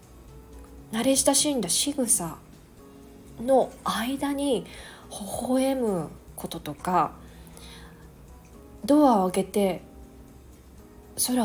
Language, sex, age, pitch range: Japanese, female, 20-39, 180-255 Hz